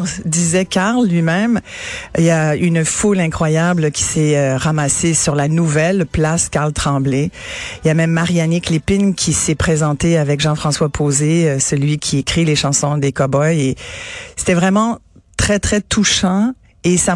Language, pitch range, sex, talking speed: French, 145-185 Hz, female, 155 wpm